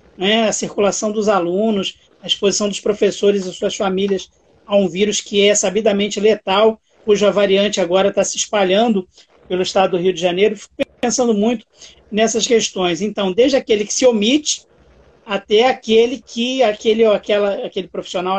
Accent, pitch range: Brazilian, 200-235 Hz